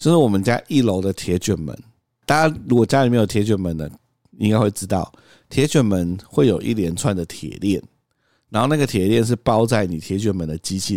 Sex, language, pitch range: male, Chinese, 95-125 Hz